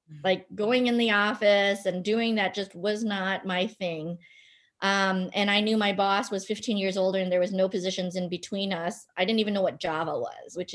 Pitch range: 185-225 Hz